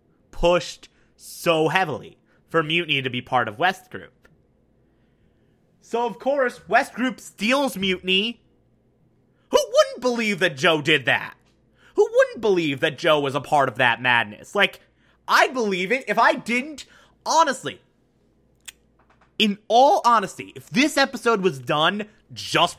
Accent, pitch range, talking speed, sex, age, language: American, 165-230 Hz, 140 wpm, male, 30-49, English